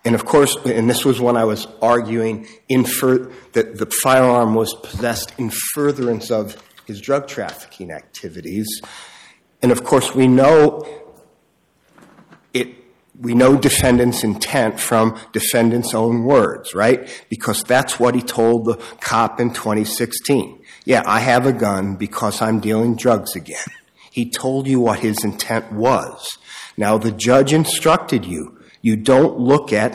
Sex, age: male, 50-69